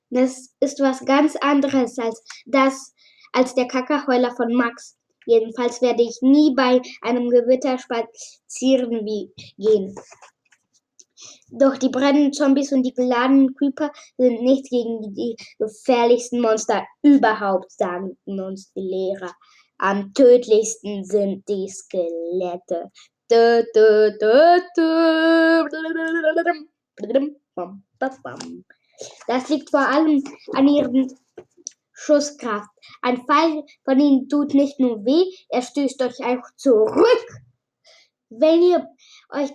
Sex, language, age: female, German, 10-29